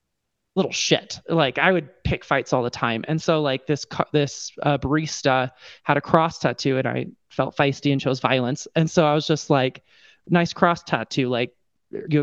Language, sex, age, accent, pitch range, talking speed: English, male, 20-39, American, 130-170 Hz, 190 wpm